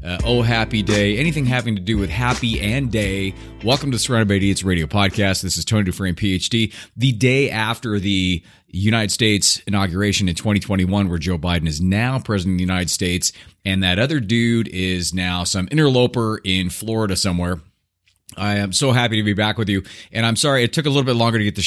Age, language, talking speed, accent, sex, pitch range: 30-49, English, 210 wpm, American, male, 95-120 Hz